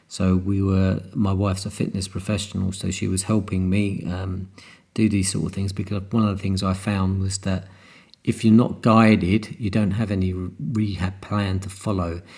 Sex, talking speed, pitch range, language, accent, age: male, 195 wpm, 95-110 Hz, English, British, 40-59